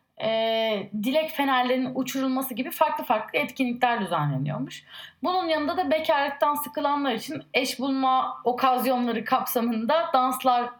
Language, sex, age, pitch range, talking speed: Turkish, female, 30-49, 230-310 Hz, 110 wpm